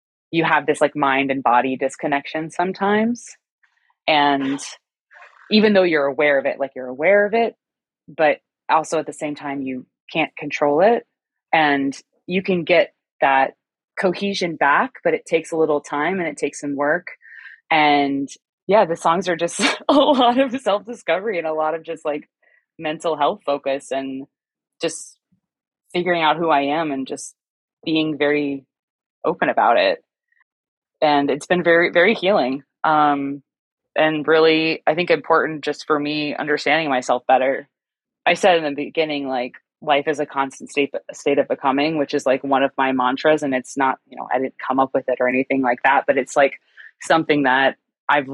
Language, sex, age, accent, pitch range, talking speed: English, female, 20-39, American, 135-170 Hz, 175 wpm